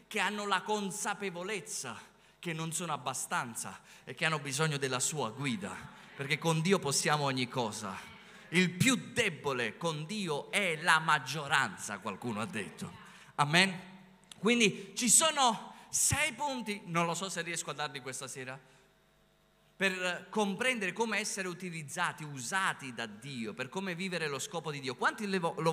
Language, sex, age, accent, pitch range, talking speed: Italian, male, 30-49, native, 155-220 Hz, 150 wpm